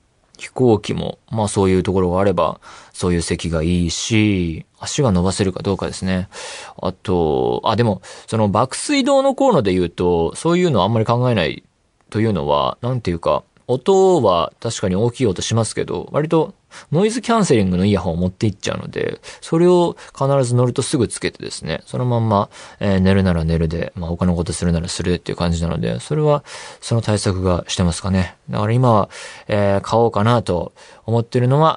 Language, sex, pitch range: Japanese, male, 95-145 Hz